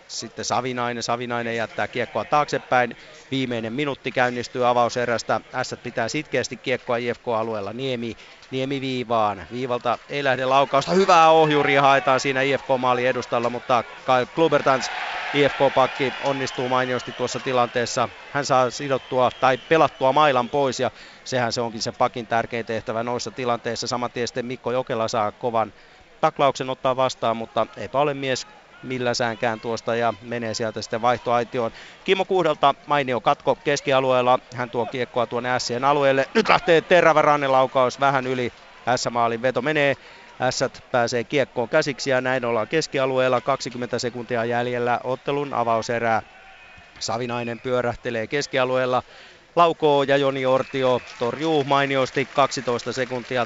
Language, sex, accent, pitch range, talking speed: Finnish, male, native, 120-135 Hz, 130 wpm